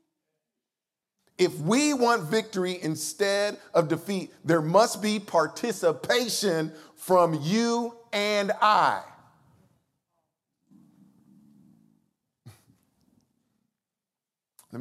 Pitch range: 125-200 Hz